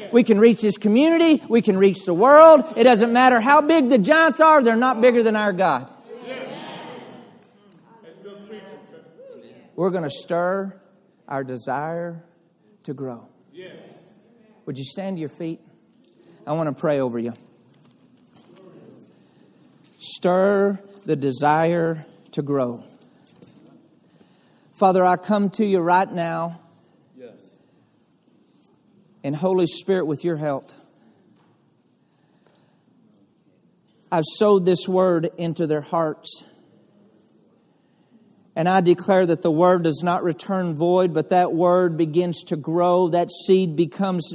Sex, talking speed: male, 120 wpm